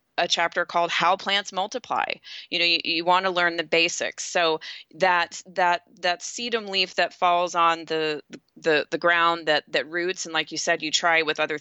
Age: 30-49